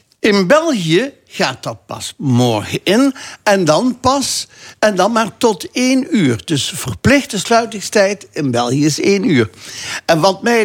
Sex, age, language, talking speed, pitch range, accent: male, 60-79, Dutch, 150 wpm, 155-230 Hz, Dutch